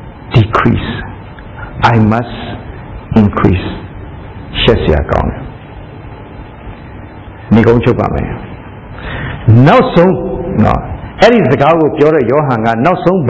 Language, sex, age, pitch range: English, male, 60-79, 95-120 Hz